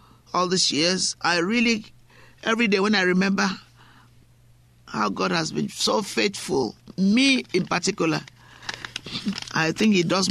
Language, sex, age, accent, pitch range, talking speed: English, male, 50-69, Nigerian, 120-195 Hz, 135 wpm